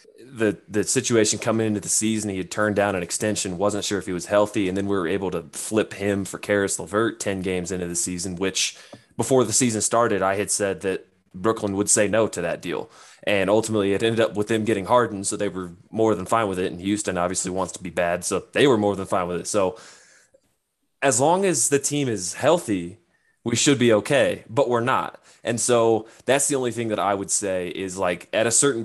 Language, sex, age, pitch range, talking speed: English, male, 20-39, 90-110 Hz, 235 wpm